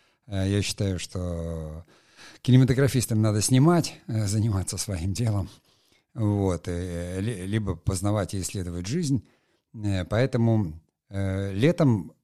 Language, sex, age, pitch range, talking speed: Russian, male, 50-69, 95-120 Hz, 85 wpm